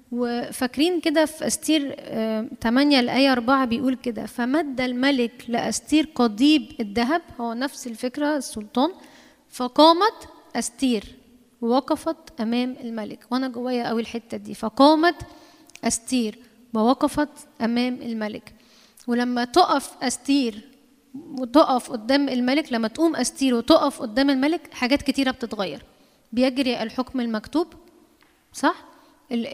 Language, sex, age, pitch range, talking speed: Arabic, female, 10-29, 240-300 Hz, 105 wpm